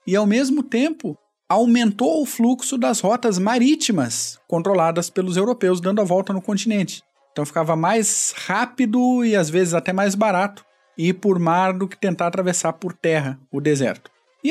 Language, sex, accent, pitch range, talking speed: Portuguese, male, Brazilian, 165-220 Hz, 165 wpm